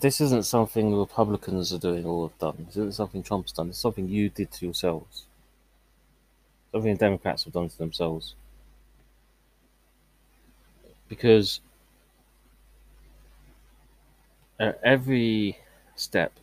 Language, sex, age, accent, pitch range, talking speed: English, male, 30-49, British, 85-110 Hz, 115 wpm